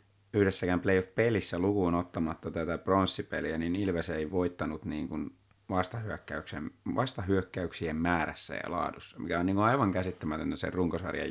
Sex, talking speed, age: male, 140 wpm, 30-49